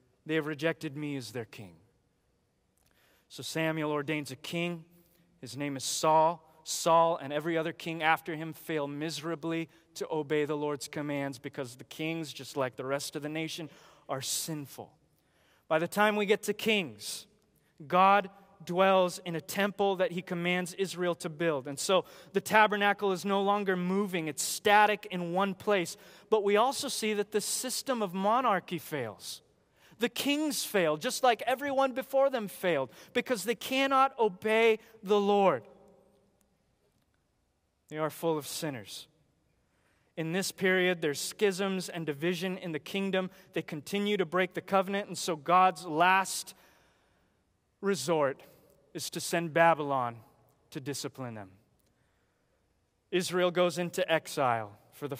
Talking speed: 150 wpm